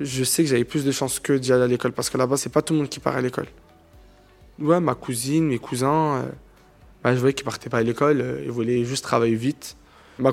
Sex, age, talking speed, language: male, 20-39, 250 wpm, French